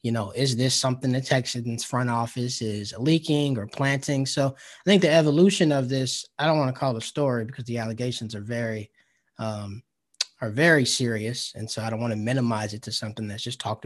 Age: 20-39